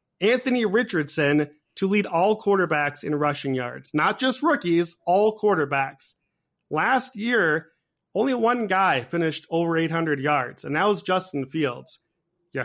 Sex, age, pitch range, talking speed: male, 30-49, 150-210 Hz, 140 wpm